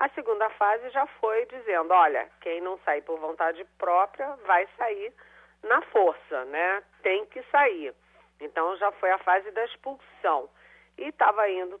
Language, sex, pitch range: Portuguese, female, 160-235 Hz